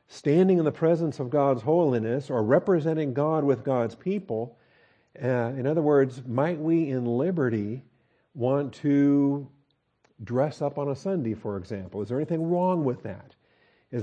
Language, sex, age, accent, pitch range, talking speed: English, male, 50-69, American, 120-150 Hz, 160 wpm